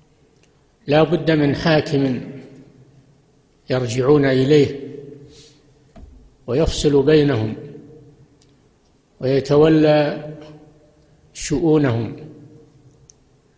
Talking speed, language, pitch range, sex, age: 45 wpm, Arabic, 135-150 Hz, male, 60-79